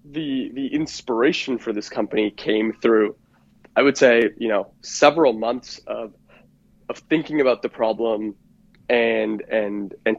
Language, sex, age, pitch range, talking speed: English, male, 20-39, 105-115 Hz, 140 wpm